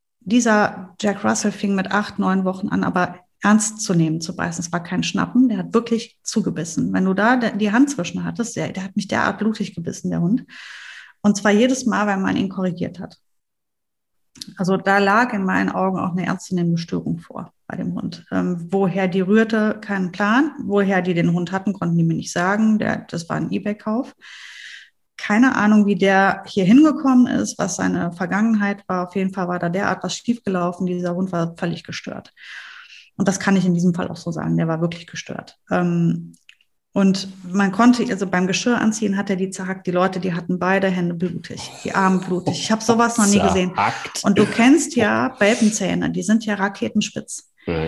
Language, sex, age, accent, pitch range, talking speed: German, female, 30-49, German, 185-215 Hz, 200 wpm